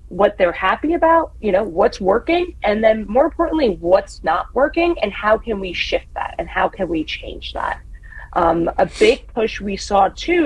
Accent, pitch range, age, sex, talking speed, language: American, 195-255 Hz, 30-49, female, 195 wpm, English